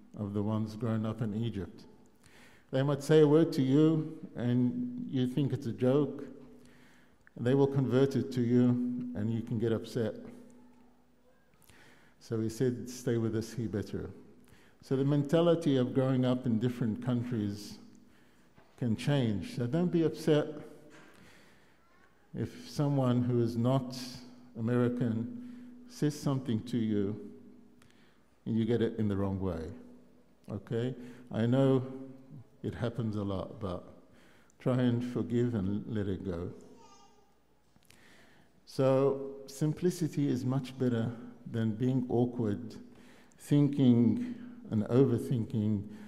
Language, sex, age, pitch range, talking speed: English, male, 50-69, 115-140 Hz, 130 wpm